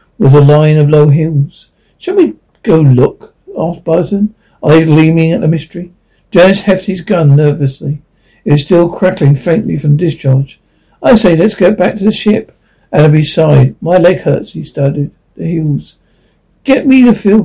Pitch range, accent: 150-185 Hz, British